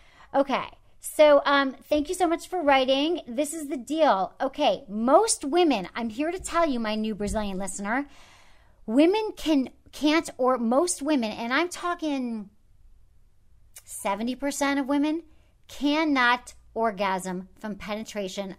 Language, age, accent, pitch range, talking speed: English, 40-59, American, 210-295 Hz, 130 wpm